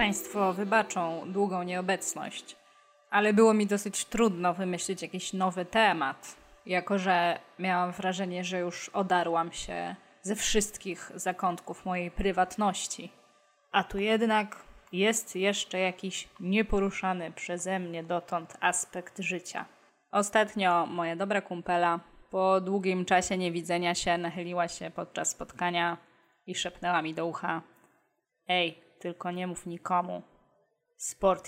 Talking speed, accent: 120 wpm, native